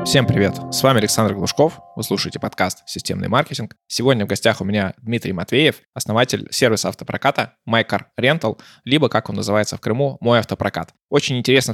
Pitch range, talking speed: 105-130 Hz, 165 wpm